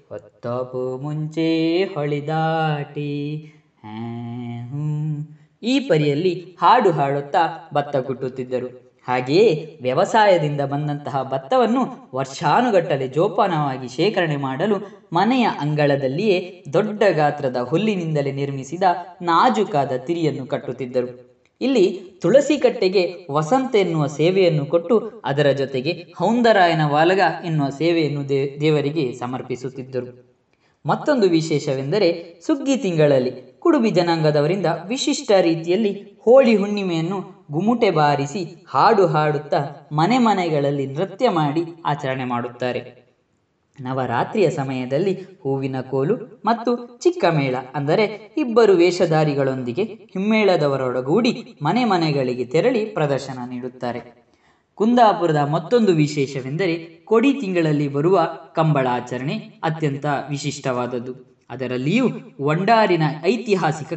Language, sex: Kannada, female